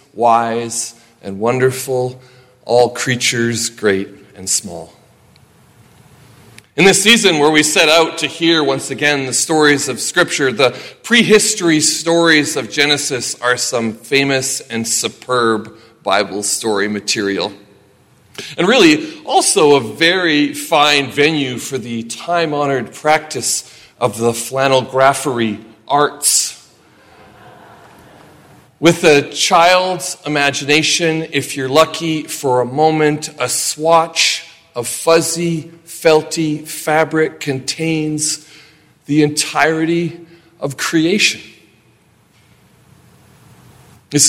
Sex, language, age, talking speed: male, English, 40-59, 100 wpm